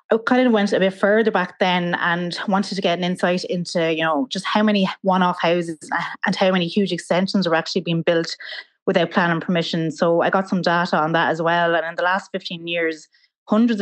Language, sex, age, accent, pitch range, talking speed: English, female, 20-39, Irish, 165-195 Hz, 220 wpm